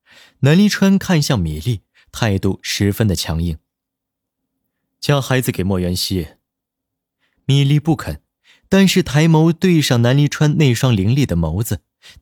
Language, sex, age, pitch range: Chinese, male, 20-39, 90-145 Hz